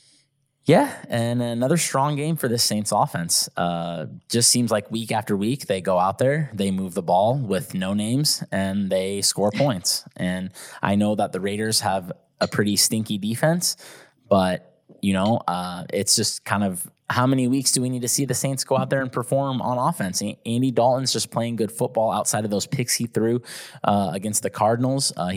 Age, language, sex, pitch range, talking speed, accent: 20-39, English, male, 100-130 Hz, 200 wpm, American